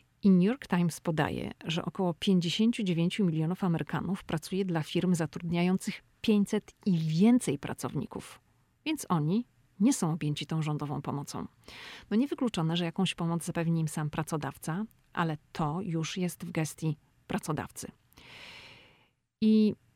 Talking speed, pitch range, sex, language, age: 130 wpm, 155-185 Hz, female, Polish, 40-59